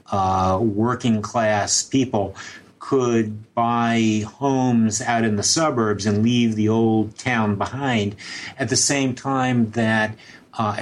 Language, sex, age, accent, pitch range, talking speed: English, male, 50-69, American, 105-125 Hz, 120 wpm